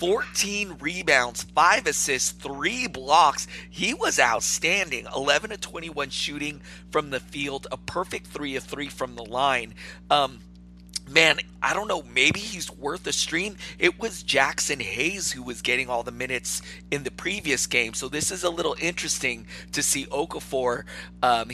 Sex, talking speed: male, 160 wpm